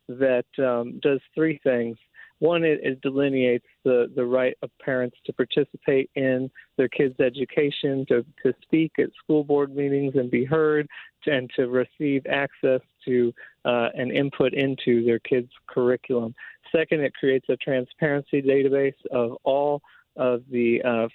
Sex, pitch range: male, 125-140 Hz